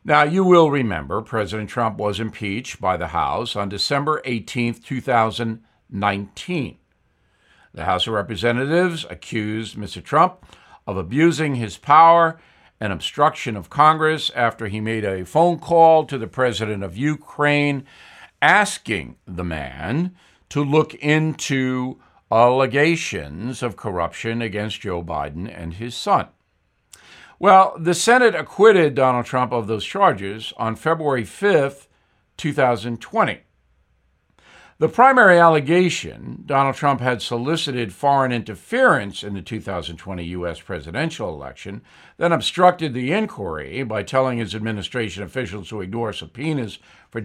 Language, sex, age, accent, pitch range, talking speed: English, male, 60-79, American, 105-155 Hz, 125 wpm